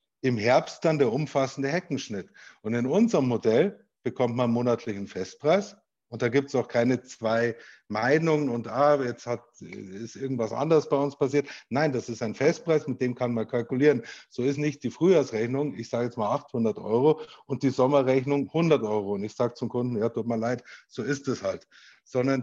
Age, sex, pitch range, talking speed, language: 50-69, male, 115-135 Hz, 190 wpm, German